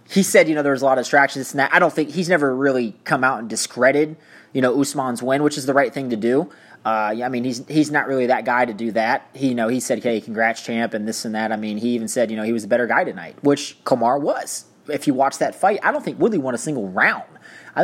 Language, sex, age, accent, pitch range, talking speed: English, male, 30-49, American, 120-155 Hz, 300 wpm